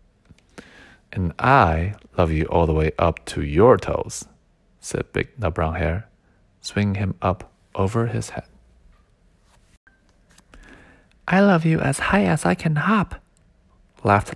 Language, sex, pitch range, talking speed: English, male, 80-110 Hz, 135 wpm